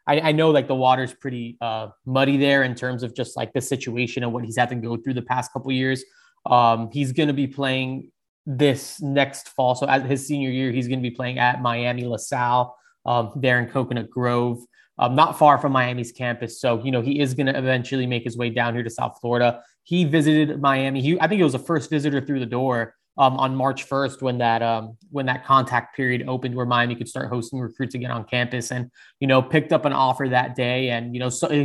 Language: English